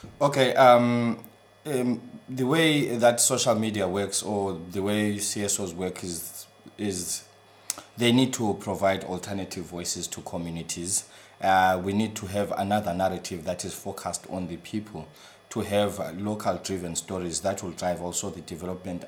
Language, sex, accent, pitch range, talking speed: English, male, South African, 85-105 Hz, 155 wpm